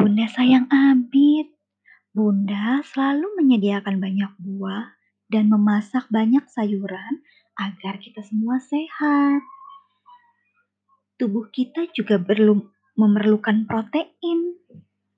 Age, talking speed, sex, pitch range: 20-39, 85 wpm, male, 195-290 Hz